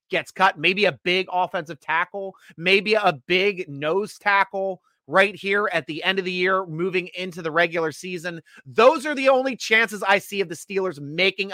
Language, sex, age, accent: English, male, 30-49, American